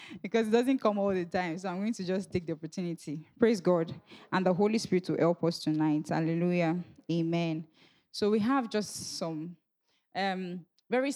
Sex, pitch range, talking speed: female, 165-215 Hz, 185 wpm